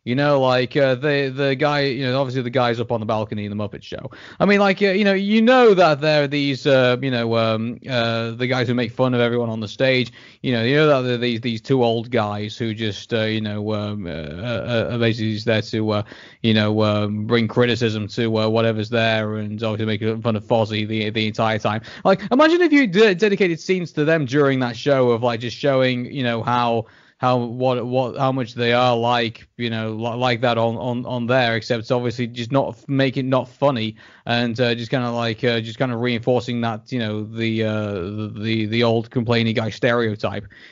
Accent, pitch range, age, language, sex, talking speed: British, 110-135 Hz, 20-39, English, male, 230 wpm